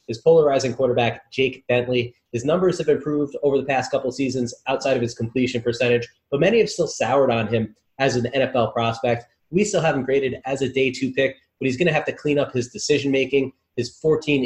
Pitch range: 120-140 Hz